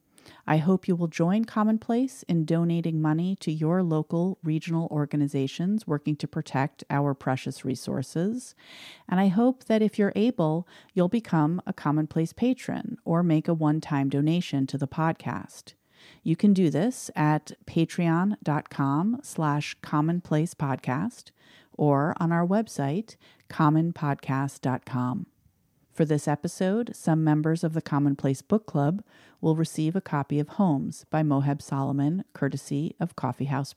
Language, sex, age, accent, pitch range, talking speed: English, female, 40-59, American, 145-180 Hz, 135 wpm